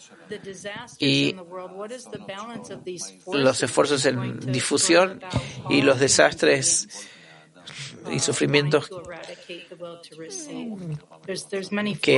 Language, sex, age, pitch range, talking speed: Spanish, male, 40-59, 135-180 Hz, 55 wpm